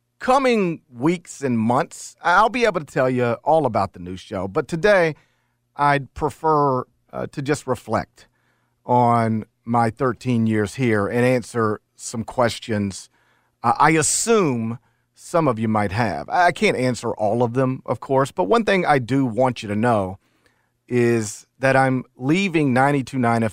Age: 40-59